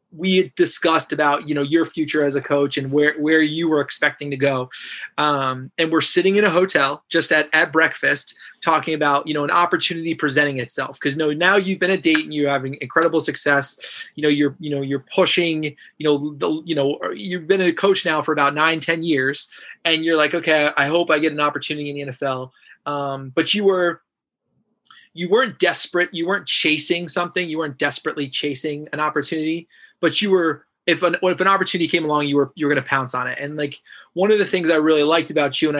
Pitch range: 145-170 Hz